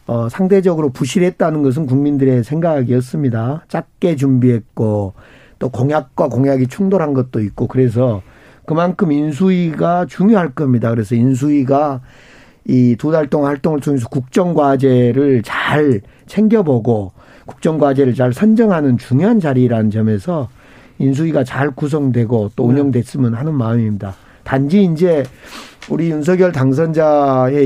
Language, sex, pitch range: Korean, male, 125-170 Hz